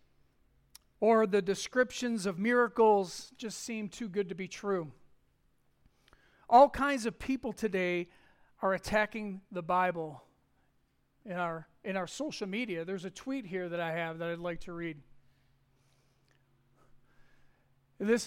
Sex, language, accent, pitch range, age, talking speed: male, English, American, 175-225 Hz, 40-59, 130 wpm